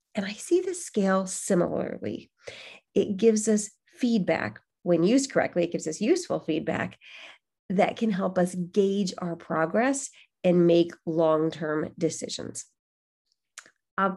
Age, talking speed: 30-49, 125 wpm